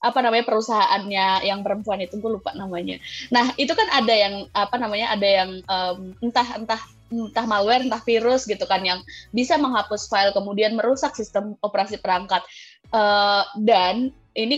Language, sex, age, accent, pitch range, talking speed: Indonesian, female, 20-39, native, 200-265 Hz, 160 wpm